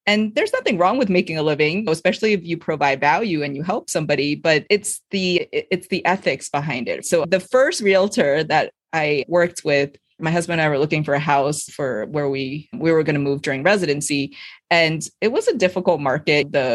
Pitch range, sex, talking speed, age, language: 155-220 Hz, female, 210 wpm, 20-39, English